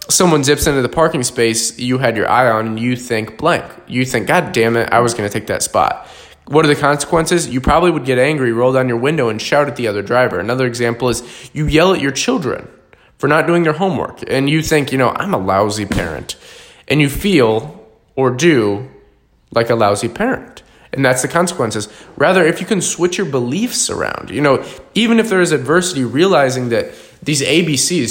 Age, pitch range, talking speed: 20-39, 115-150 Hz, 215 wpm